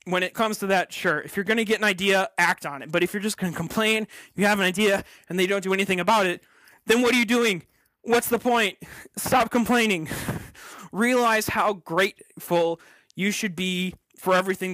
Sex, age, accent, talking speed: male, 20-39, American, 210 wpm